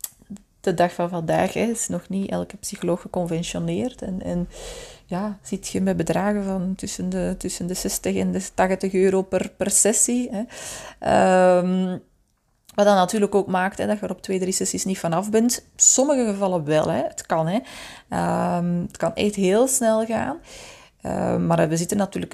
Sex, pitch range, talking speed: female, 175-210 Hz, 185 wpm